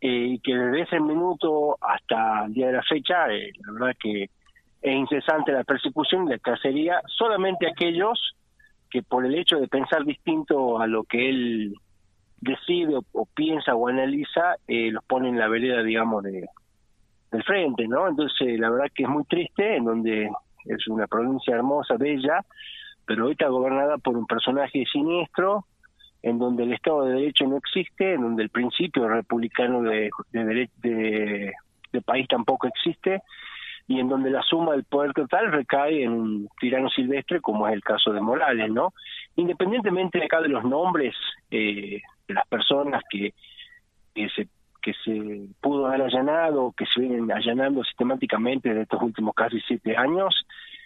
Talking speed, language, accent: 170 wpm, Spanish, Argentinian